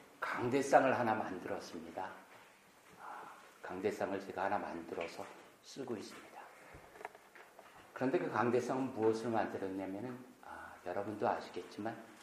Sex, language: male, Korean